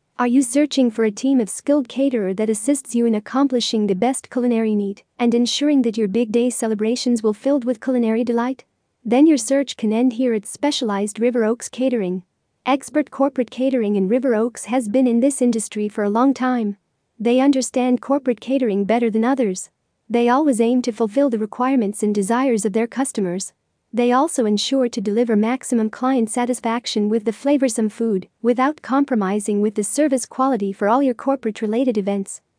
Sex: female